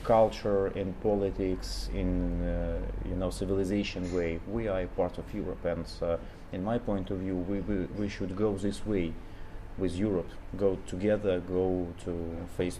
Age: 30-49